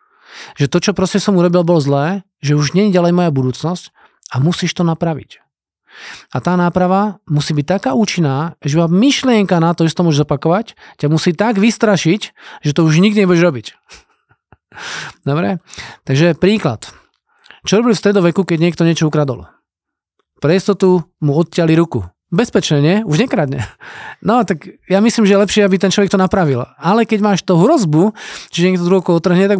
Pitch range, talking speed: 150-185 Hz, 170 wpm